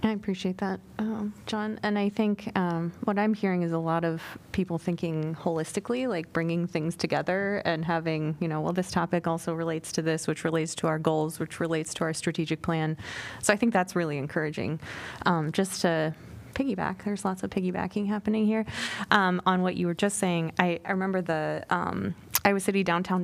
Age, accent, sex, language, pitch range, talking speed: 20-39, American, female, English, 155-185 Hz, 195 wpm